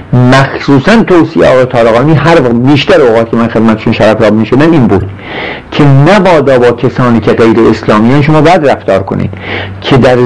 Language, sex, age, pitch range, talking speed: Persian, male, 50-69, 115-155 Hz, 165 wpm